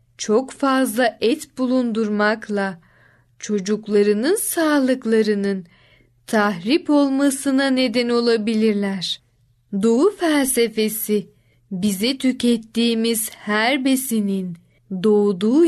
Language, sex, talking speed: Turkish, female, 65 wpm